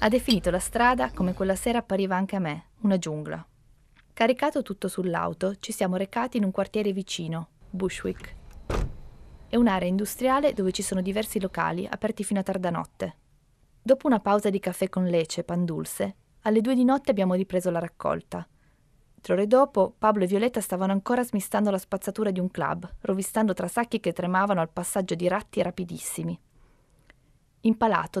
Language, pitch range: Italian, 175-210 Hz